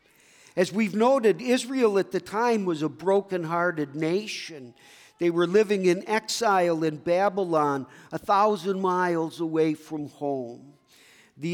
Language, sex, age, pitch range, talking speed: English, male, 50-69, 155-195 Hz, 130 wpm